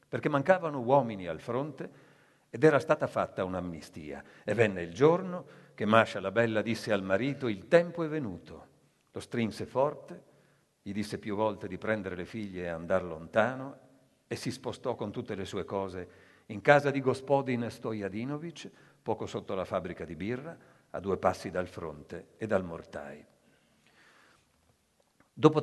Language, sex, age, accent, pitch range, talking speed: Italian, male, 50-69, native, 95-125 Hz, 155 wpm